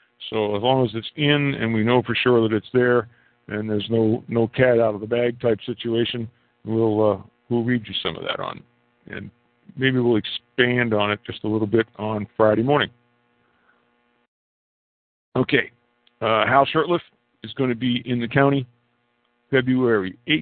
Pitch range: 115-135 Hz